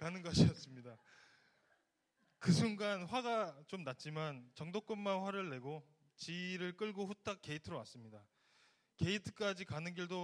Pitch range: 145-200 Hz